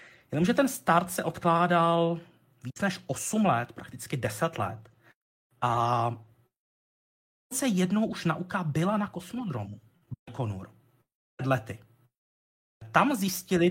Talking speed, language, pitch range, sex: 100 wpm, Czech, 120-170 Hz, male